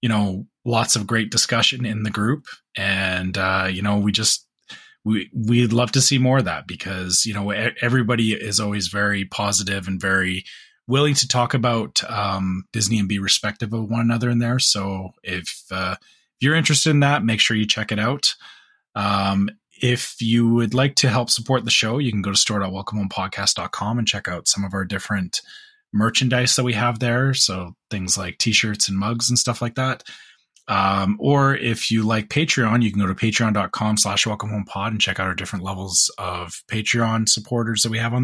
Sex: male